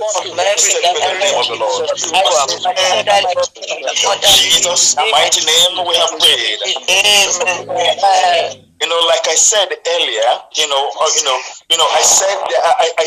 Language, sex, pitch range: English, male, 170-275 Hz